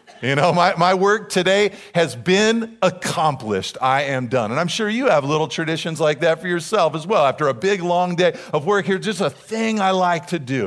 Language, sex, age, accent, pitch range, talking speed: English, male, 40-59, American, 125-195 Hz, 225 wpm